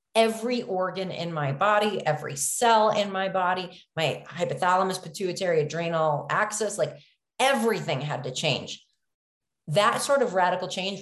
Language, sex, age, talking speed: English, female, 30-49, 135 wpm